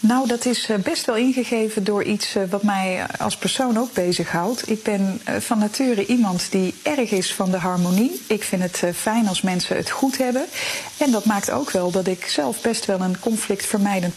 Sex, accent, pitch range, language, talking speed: female, Dutch, 185-230 Hz, Dutch, 195 wpm